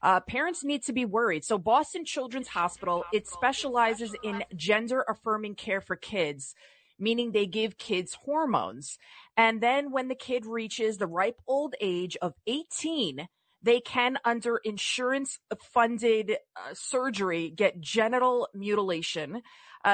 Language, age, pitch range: English, 30-49, 180-235 Hz